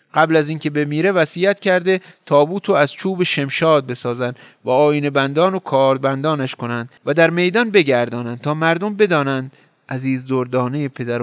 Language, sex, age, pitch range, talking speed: Persian, male, 30-49, 130-180 Hz, 150 wpm